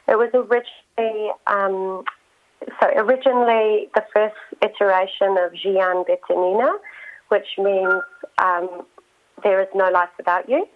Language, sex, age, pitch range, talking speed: English, female, 30-49, 195-245 Hz, 115 wpm